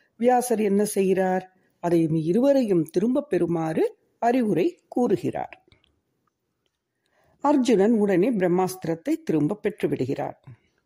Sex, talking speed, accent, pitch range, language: female, 95 wpm, Indian, 170-255 Hz, English